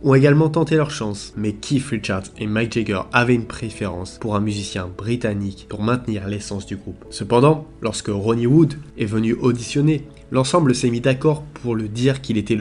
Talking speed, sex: 185 wpm, male